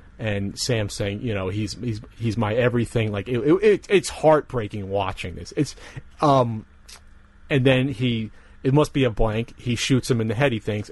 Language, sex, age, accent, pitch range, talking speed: English, male, 30-49, American, 105-135 Hz, 200 wpm